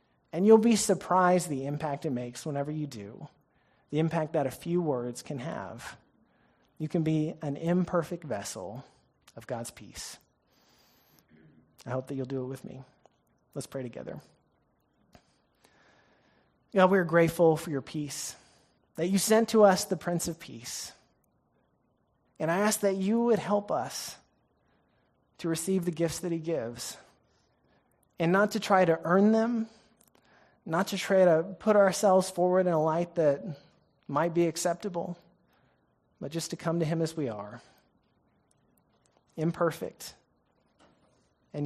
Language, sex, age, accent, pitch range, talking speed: English, male, 30-49, American, 145-180 Hz, 145 wpm